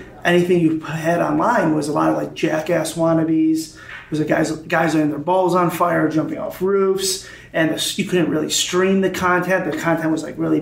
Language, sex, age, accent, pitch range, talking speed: English, male, 30-49, American, 155-180 Hz, 210 wpm